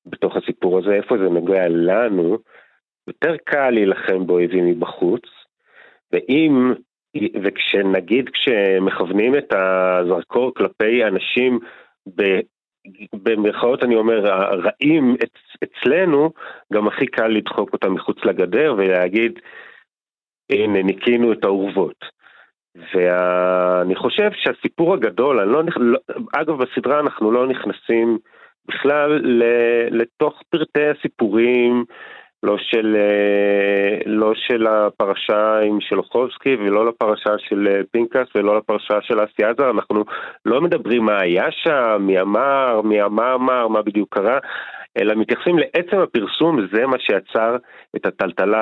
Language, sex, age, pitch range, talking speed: Hebrew, male, 40-59, 100-125 Hz, 115 wpm